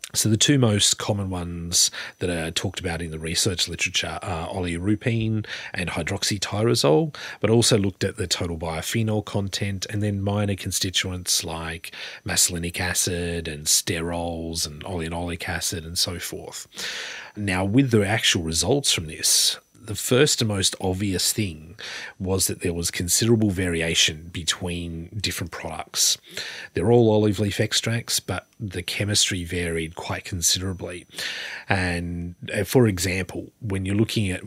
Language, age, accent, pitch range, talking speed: English, 30-49, Australian, 85-105 Hz, 140 wpm